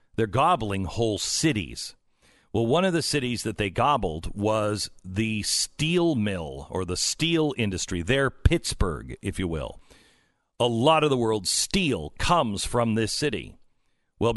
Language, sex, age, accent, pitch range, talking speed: English, male, 50-69, American, 105-135 Hz, 150 wpm